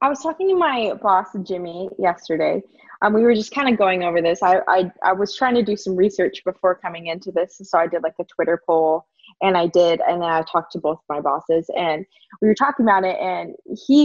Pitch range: 180-225 Hz